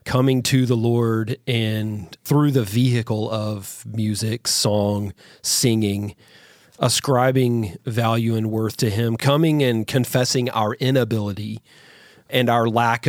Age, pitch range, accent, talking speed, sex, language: 40-59, 110-130 Hz, American, 120 wpm, male, English